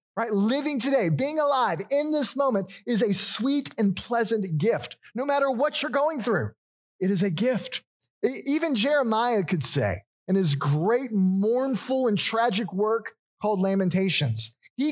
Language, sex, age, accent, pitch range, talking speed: English, male, 30-49, American, 155-230 Hz, 155 wpm